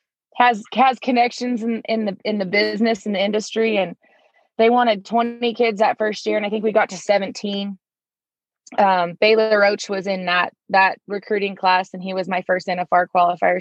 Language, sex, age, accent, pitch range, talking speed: English, female, 20-39, American, 185-225 Hz, 190 wpm